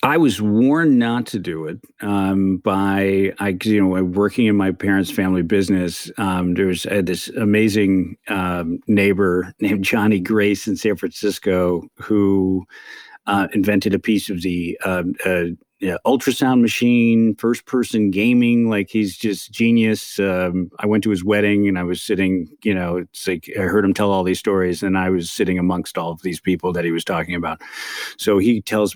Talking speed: 185 wpm